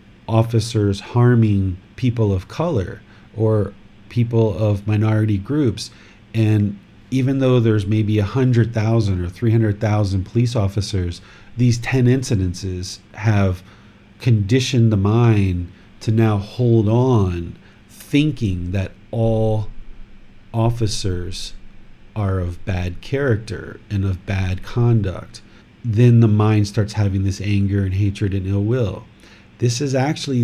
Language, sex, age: English, male, 40-59